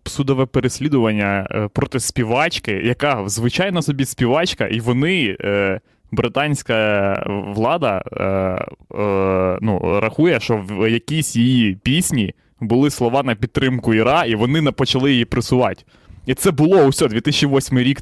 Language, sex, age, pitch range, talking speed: Ukrainian, male, 20-39, 105-140 Hz, 120 wpm